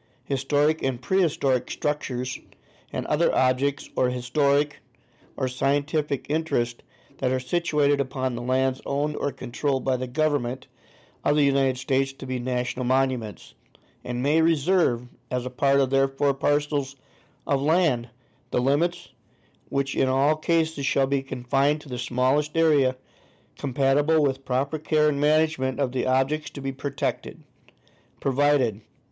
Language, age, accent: English, 50-69, American